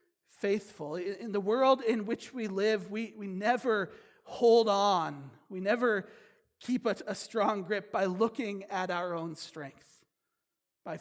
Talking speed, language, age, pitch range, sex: 145 wpm, English, 40-59, 175-220 Hz, male